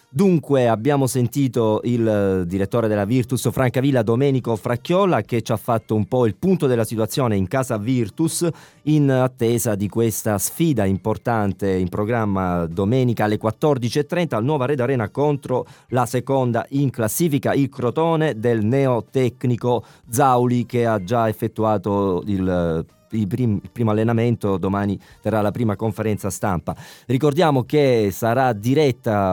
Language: Italian